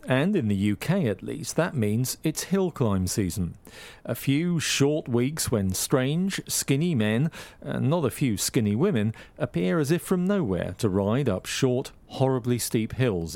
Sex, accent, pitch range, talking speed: male, British, 105-140 Hz, 170 wpm